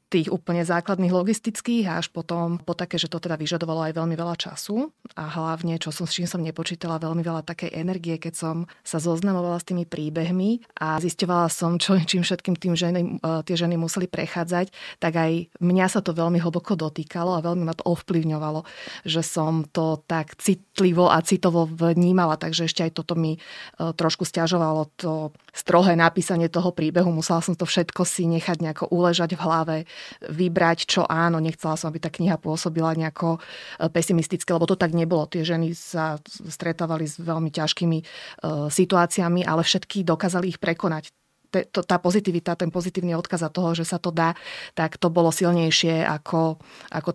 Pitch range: 160-175 Hz